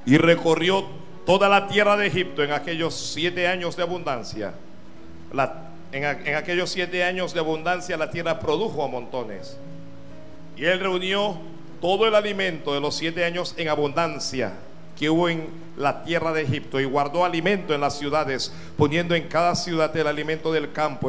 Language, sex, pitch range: Spanish, male, 145-180 Hz